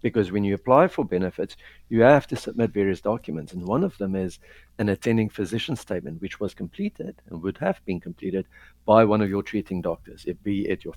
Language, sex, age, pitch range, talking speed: English, male, 60-79, 95-115 Hz, 215 wpm